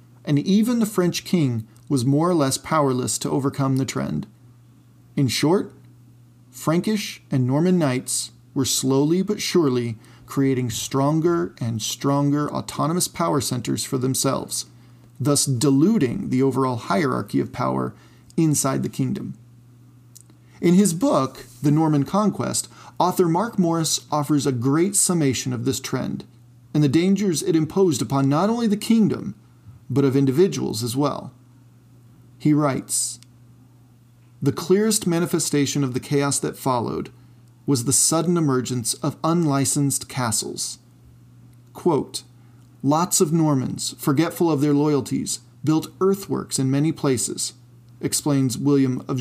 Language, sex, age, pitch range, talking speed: English, male, 40-59, 120-155 Hz, 130 wpm